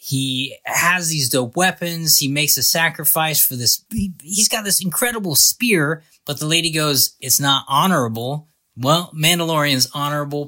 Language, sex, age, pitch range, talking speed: English, male, 20-39, 135-175 Hz, 150 wpm